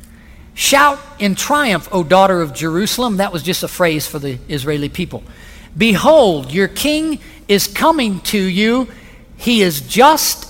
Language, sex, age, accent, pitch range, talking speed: English, male, 50-69, American, 160-220 Hz, 150 wpm